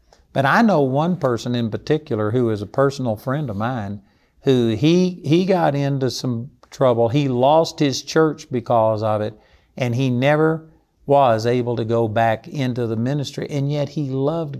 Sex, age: male, 50-69